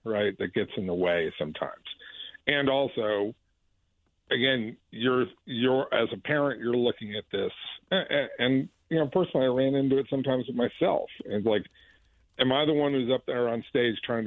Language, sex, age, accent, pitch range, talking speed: English, male, 50-69, American, 105-155 Hz, 180 wpm